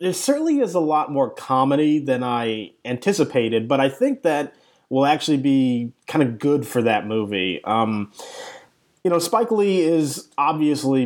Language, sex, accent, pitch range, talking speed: English, male, American, 120-155 Hz, 165 wpm